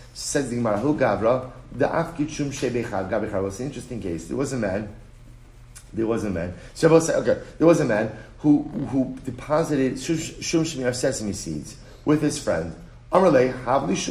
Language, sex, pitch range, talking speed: English, male, 115-150 Hz, 140 wpm